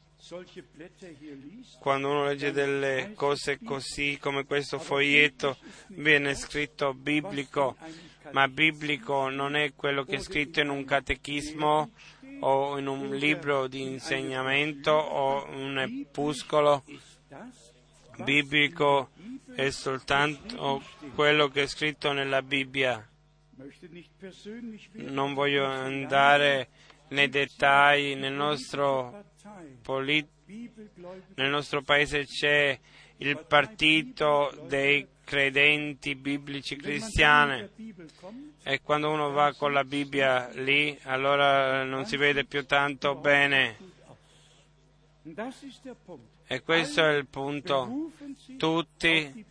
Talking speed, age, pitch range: 95 wpm, 30-49, 140-155 Hz